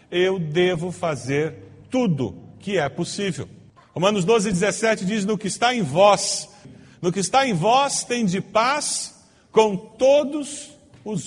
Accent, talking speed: Brazilian, 145 wpm